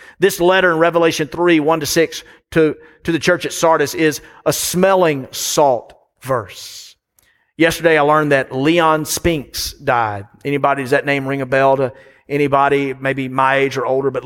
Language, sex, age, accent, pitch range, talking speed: English, male, 40-59, American, 150-175 Hz, 170 wpm